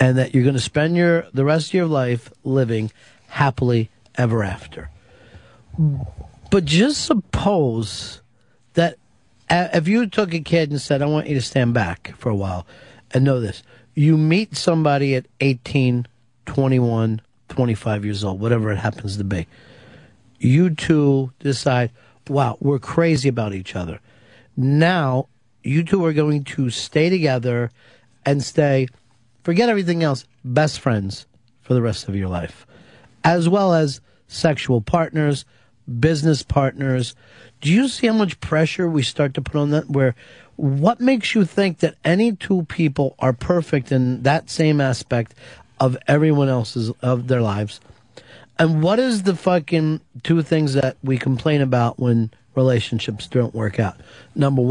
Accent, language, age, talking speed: American, English, 50-69, 150 wpm